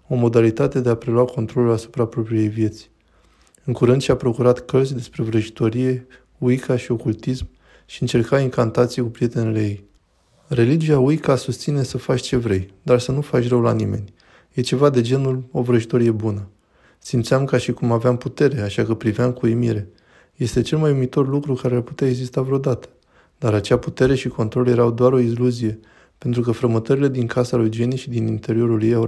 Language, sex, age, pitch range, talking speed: Romanian, male, 20-39, 115-130 Hz, 180 wpm